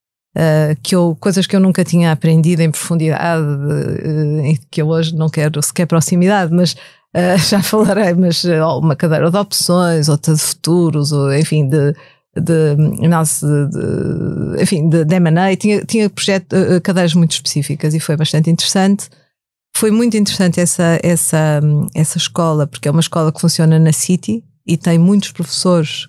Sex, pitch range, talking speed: female, 155-180 Hz, 170 wpm